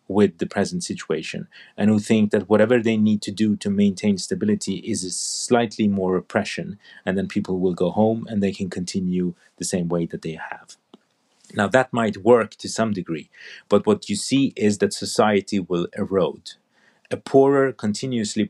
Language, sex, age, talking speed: English, male, 30-49, 180 wpm